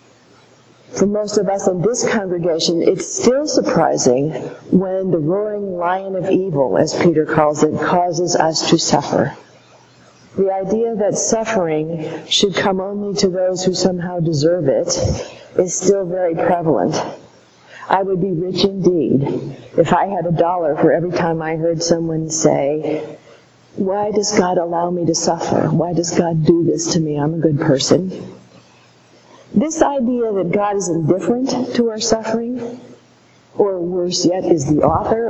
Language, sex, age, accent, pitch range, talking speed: English, female, 50-69, American, 160-205 Hz, 155 wpm